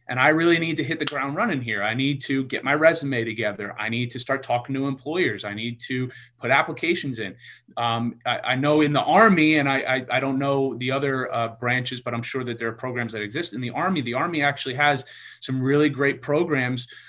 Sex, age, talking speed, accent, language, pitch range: male, 30-49, 235 wpm, American, English, 120-150 Hz